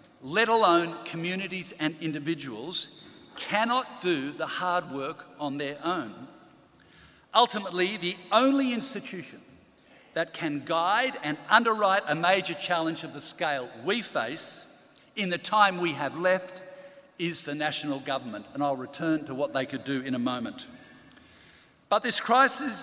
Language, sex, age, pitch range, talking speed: English, male, 50-69, 160-220 Hz, 140 wpm